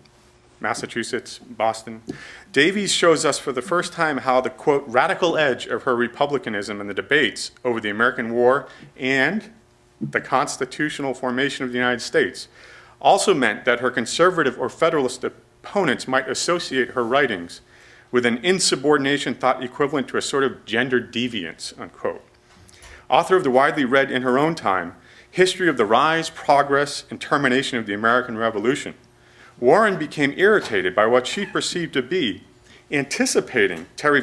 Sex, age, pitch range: male, 40-59, 120-145 Hz